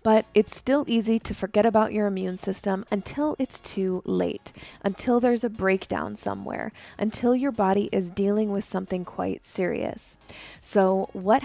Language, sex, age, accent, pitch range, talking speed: English, female, 20-39, American, 190-230 Hz, 155 wpm